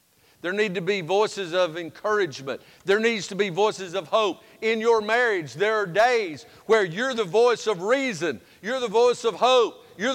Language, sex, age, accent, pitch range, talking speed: English, male, 50-69, American, 200-265 Hz, 190 wpm